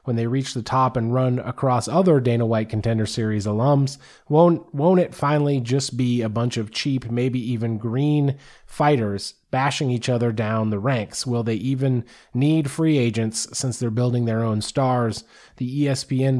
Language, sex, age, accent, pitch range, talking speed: English, male, 30-49, American, 110-135 Hz, 175 wpm